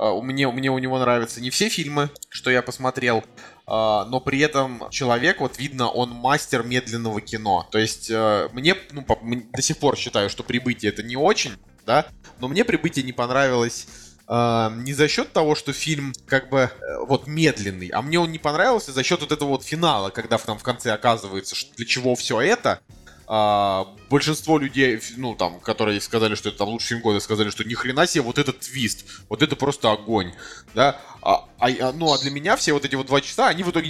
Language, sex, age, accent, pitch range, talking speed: Russian, male, 20-39, native, 110-145 Hz, 195 wpm